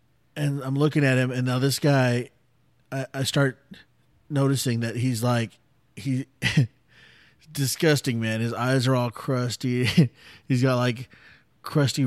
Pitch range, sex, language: 115-140 Hz, male, English